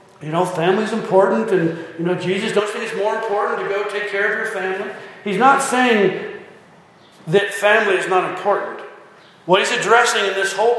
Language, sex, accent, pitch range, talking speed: English, male, American, 185-230 Hz, 195 wpm